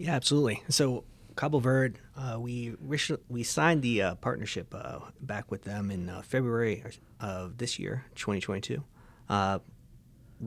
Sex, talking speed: male, 130 wpm